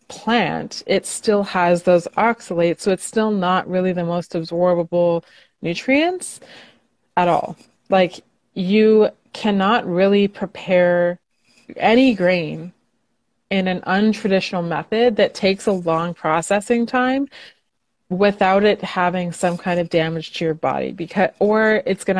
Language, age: English, 20-39